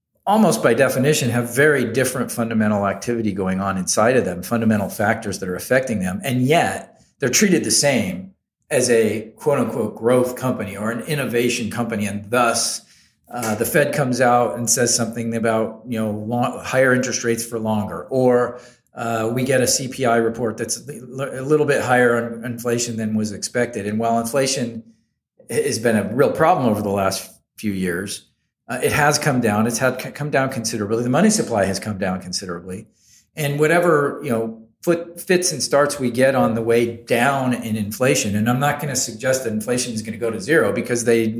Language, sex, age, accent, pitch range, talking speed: English, male, 40-59, American, 110-130 Hz, 195 wpm